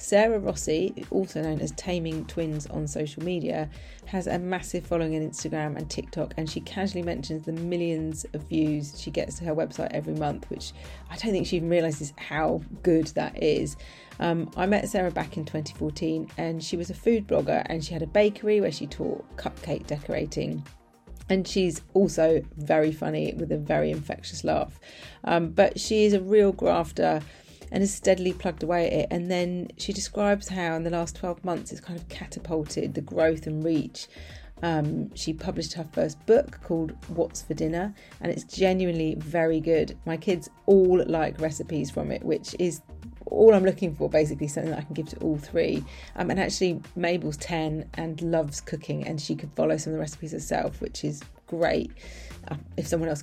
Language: English